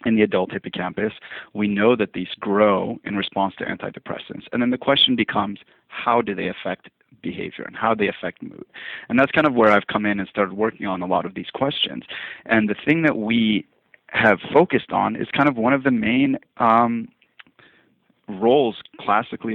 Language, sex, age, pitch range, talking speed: English, male, 40-59, 100-115 Hz, 195 wpm